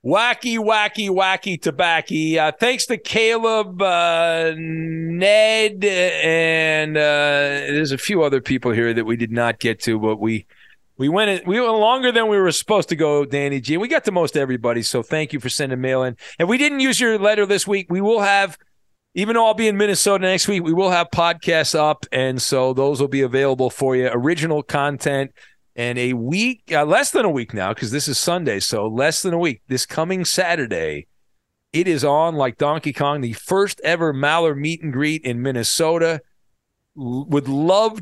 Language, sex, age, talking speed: English, male, 40-59, 195 wpm